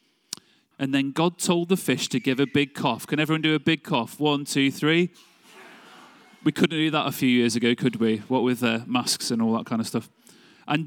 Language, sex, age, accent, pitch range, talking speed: English, male, 30-49, British, 125-185 Hz, 225 wpm